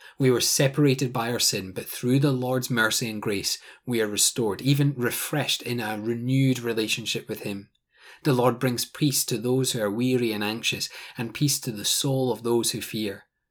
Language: English